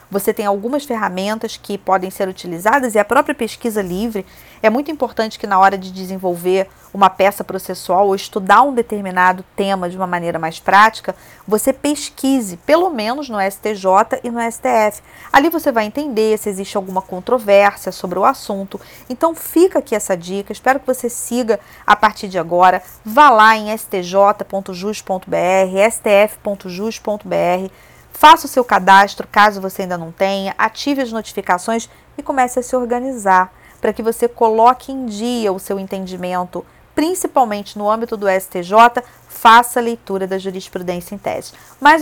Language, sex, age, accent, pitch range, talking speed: Portuguese, female, 40-59, Brazilian, 190-245 Hz, 160 wpm